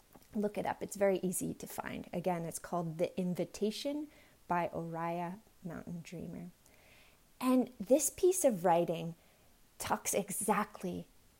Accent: American